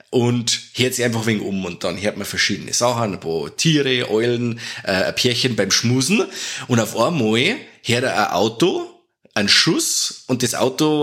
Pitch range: 115-145 Hz